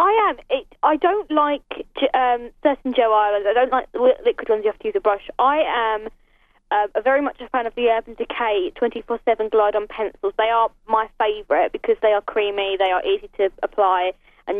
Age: 20-39